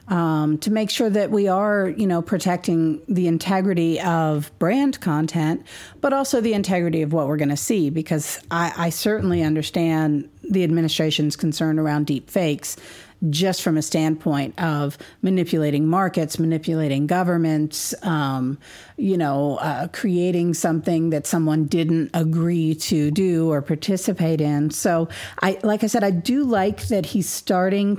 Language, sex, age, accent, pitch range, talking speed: English, female, 40-59, American, 155-190 Hz, 150 wpm